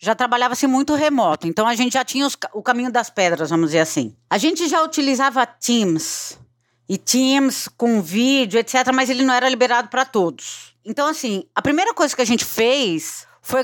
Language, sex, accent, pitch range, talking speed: Portuguese, female, Brazilian, 215-280 Hz, 190 wpm